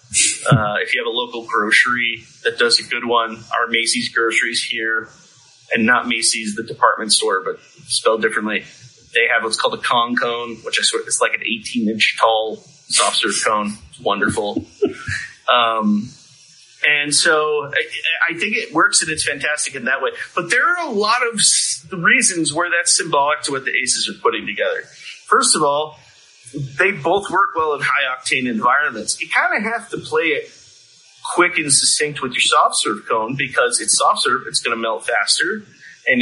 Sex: male